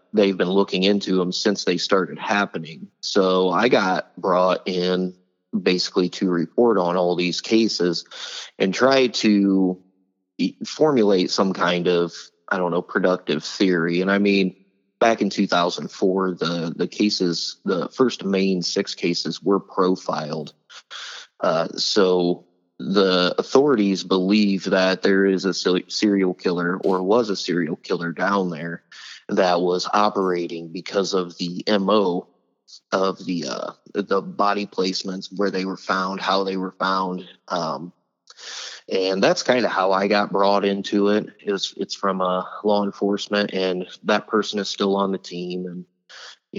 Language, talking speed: English, 150 wpm